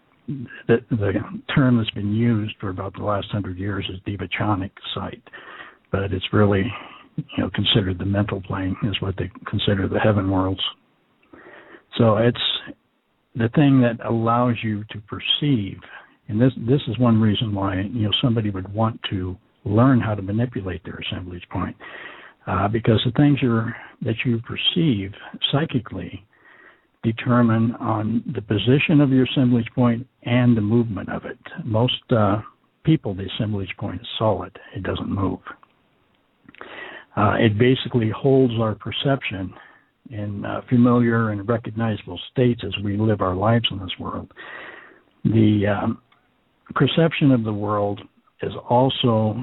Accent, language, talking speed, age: American, English, 145 wpm, 60-79